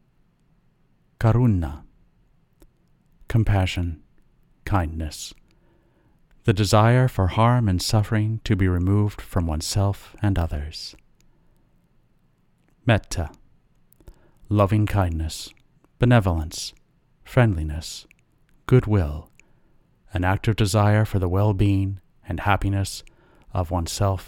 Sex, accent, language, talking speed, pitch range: male, American, English, 80 wpm, 85-115 Hz